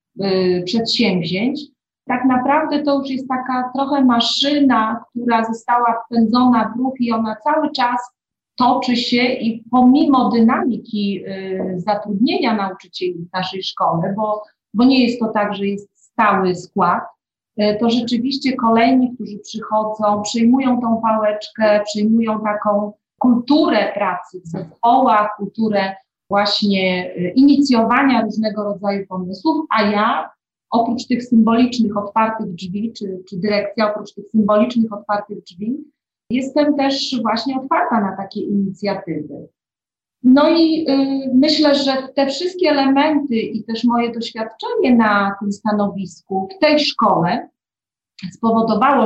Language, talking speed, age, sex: Polish, 125 wpm, 40-59, female